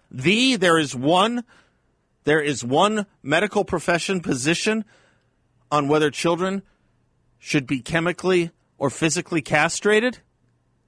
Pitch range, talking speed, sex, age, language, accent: 105-160 Hz, 105 wpm, male, 40-59, English, American